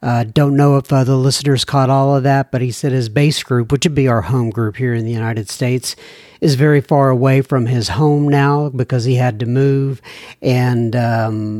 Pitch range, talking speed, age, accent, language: 125-170 Hz, 215 wpm, 60-79, American, English